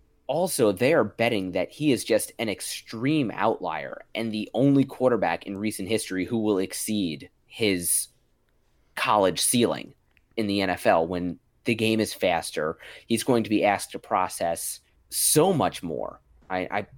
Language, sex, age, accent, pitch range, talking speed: English, male, 30-49, American, 85-110 Hz, 155 wpm